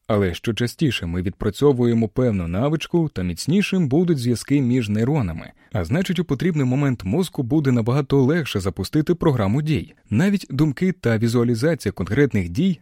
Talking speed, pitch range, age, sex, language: 145 wpm, 105-155 Hz, 30-49, male, Ukrainian